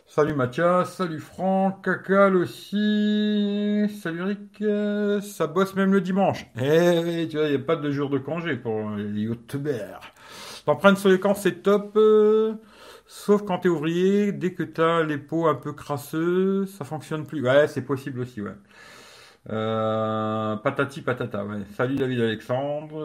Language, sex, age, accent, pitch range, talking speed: French, male, 50-69, French, 125-180 Hz, 155 wpm